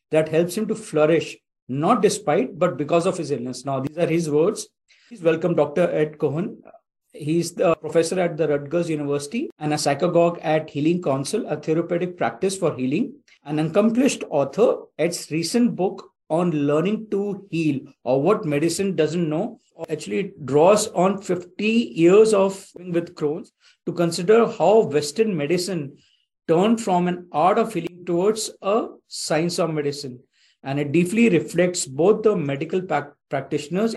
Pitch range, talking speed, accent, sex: 155-195 Hz, 155 wpm, Indian, male